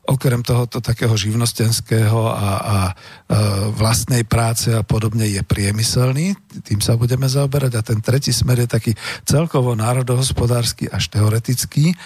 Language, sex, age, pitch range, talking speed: Slovak, male, 50-69, 105-130 Hz, 135 wpm